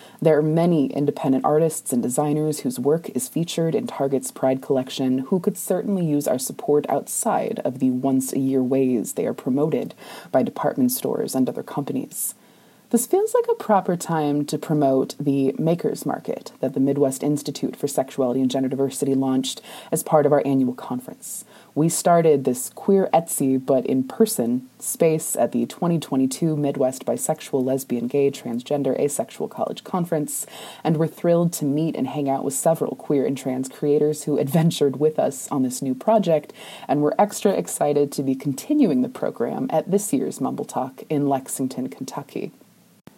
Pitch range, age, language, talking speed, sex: 140-205 Hz, 20-39, English, 170 wpm, female